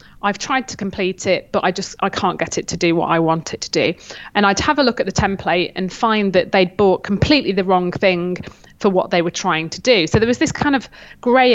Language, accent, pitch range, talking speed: English, British, 170-195 Hz, 265 wpm